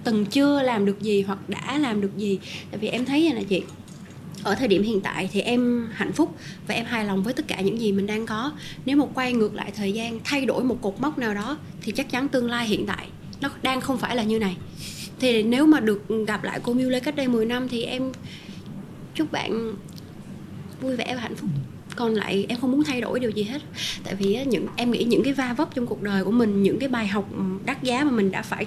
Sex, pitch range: female, 205-275 Hz